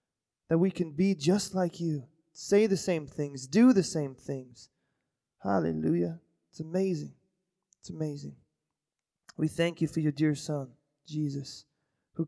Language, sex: English, male